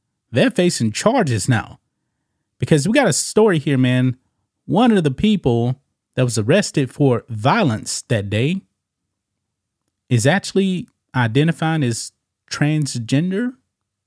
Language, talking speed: English, 115 wpm